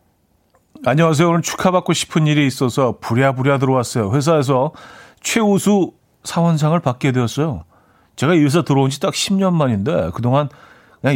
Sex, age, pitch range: male, 40-59, 115-155 Hz